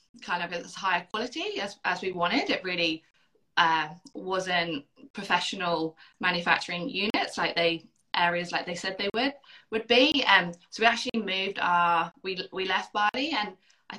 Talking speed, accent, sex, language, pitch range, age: 165 wpm, British, female, English, 170-195 Hz, 20-39